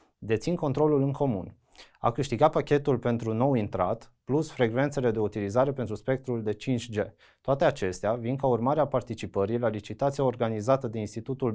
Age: 30-49